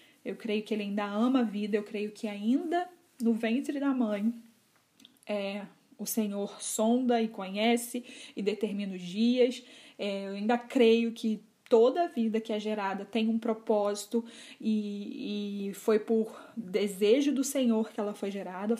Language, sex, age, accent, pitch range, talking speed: Portuguese, female, 20-39, Brazilian, 210-250 Hz, 165 wpm